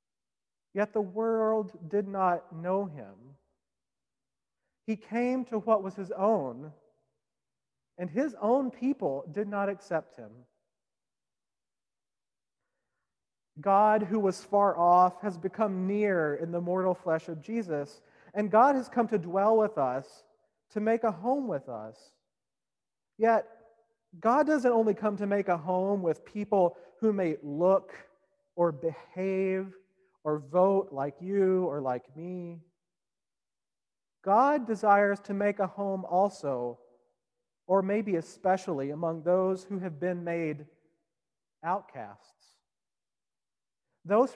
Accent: American